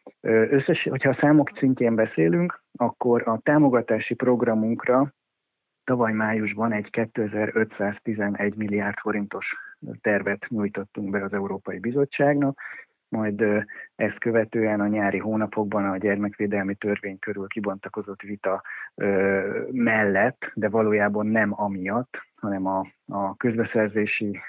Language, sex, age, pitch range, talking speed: Hungarian, male, 30-49, 100-115 Hz, 105 wpm